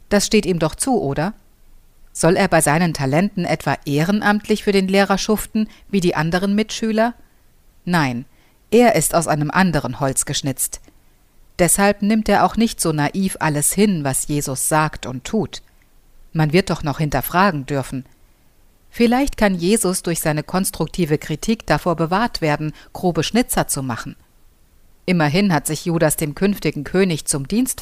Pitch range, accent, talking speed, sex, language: 150-200 Hz, German, 155 wpm, female, German